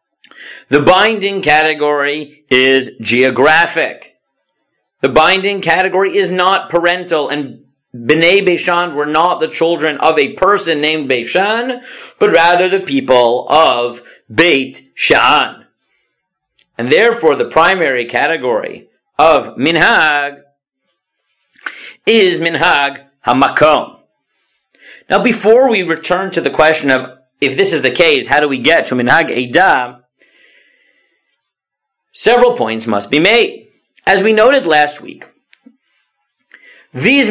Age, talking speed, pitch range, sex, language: 40-59, 115 wpm, 140-220 Hz, male, English